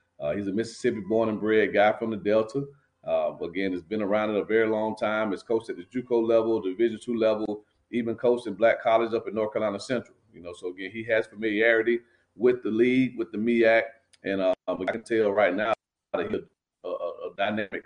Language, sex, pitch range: English, male, 100-120 Hz